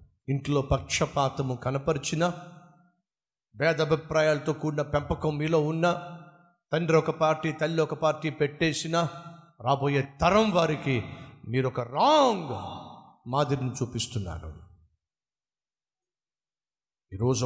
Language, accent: Telugu, native